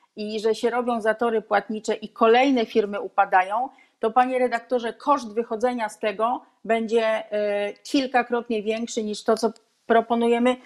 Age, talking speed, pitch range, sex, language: 40-59, 135 wpm, 220-255 Hz, female, Polish